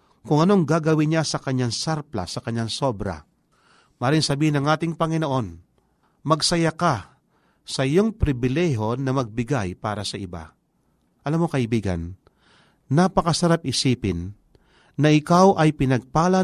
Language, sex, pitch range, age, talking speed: Filipino, male, 110-160 Hz, 40-59, 125 wpm